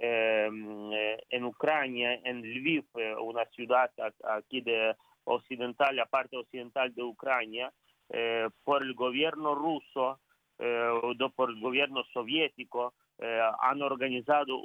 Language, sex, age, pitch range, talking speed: Spanish, male, 40-59, 115-140 Hz, 120 wpm